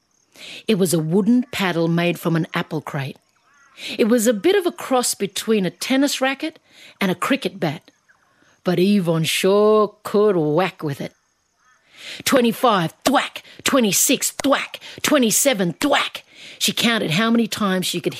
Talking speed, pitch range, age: 150 wpm, 170-225 Hz, 50-69